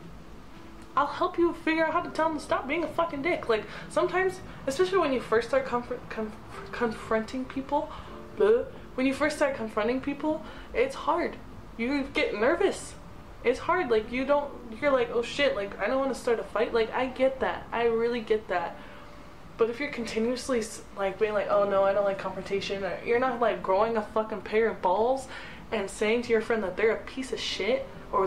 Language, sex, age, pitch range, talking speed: English, female, 20-39, 220-290 Hz, 210 wpm